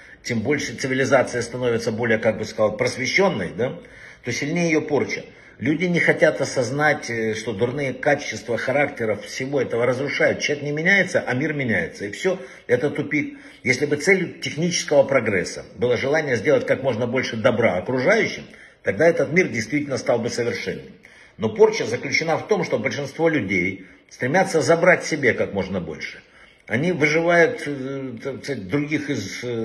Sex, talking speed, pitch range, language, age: male, 150 wpm, 115-155 Hz, Russian, 60-79